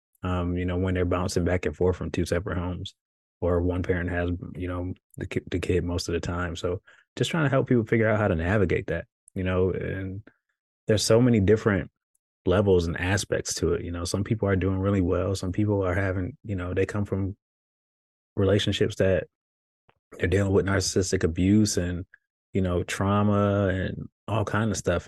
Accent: American